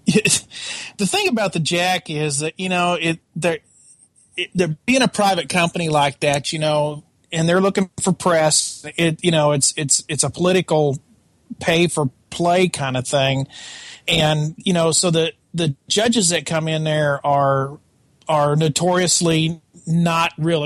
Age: 40-59